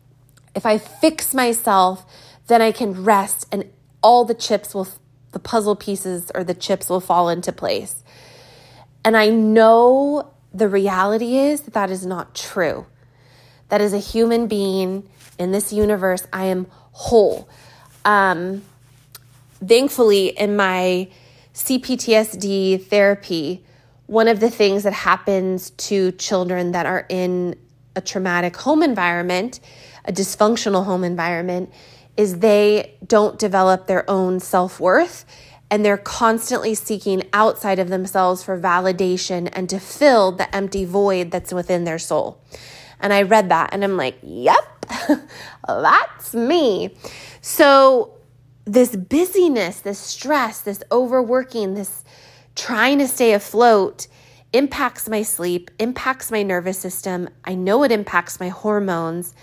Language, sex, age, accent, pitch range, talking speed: English, female, 20-39, American, 175-215 Hz, 130 wpm